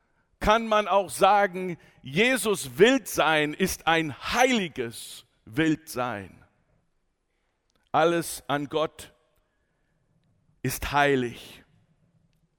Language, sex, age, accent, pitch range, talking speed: German, male, 60-79, German, 140-190 Hz, 70 wpm